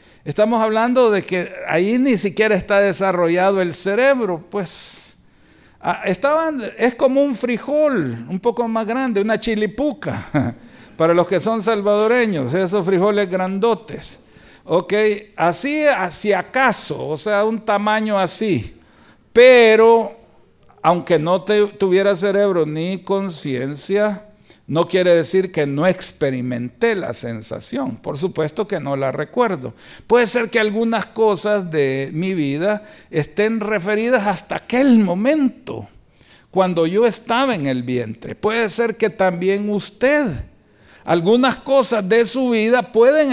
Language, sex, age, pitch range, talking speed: Spanish, male, 60-79, 180-230 Hz, 125 wpm